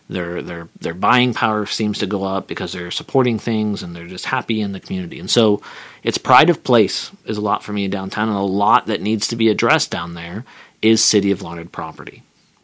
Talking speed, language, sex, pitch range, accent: 235 wpm, English, male, 100-120 Hz, American